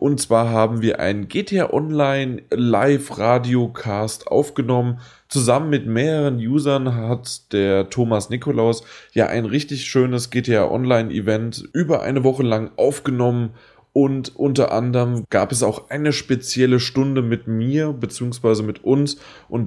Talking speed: 135 wpm